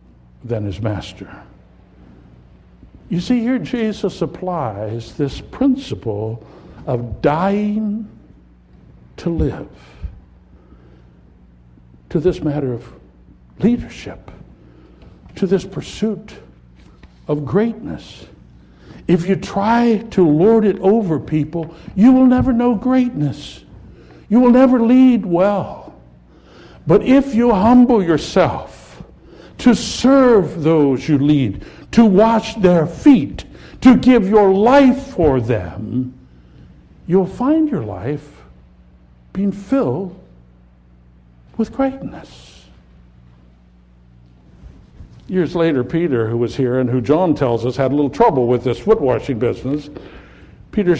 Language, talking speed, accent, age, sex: English, 105 wpm, American, 60-79, male